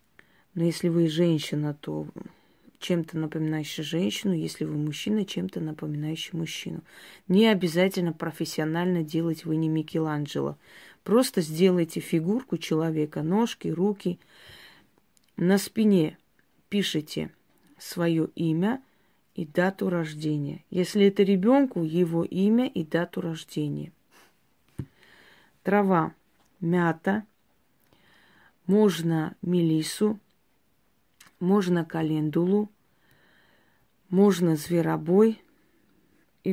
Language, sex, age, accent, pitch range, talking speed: Russian, female, 30-49, native, 160-200 Hz, 85 wpm